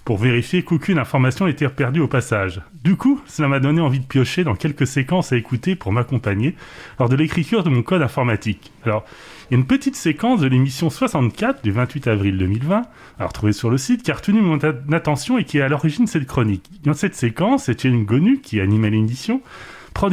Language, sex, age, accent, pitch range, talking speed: French, male, 30-49, French, 125-175 Hz, 215 wpm